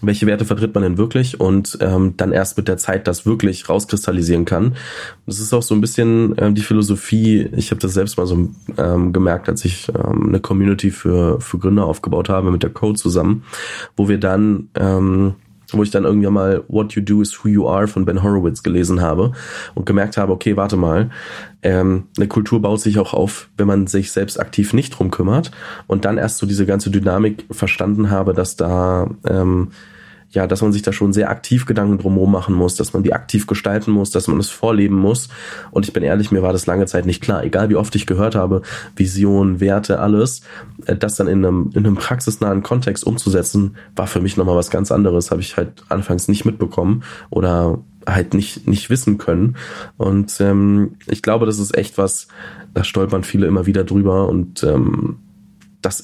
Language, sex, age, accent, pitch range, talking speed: German, male, 20-39, German, 95-105 Hz, 205 wpm